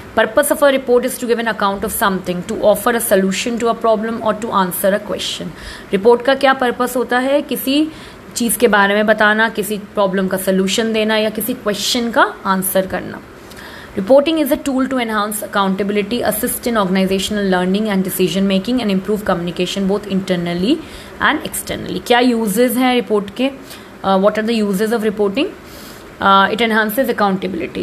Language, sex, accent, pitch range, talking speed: English, female, Indian, 200-245 Hz, 175 wpm